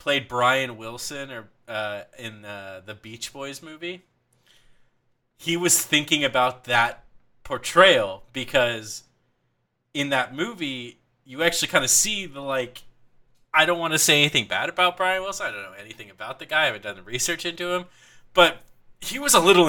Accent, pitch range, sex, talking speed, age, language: American, 120-165 Hz, male, 175 wpm, 20-39, English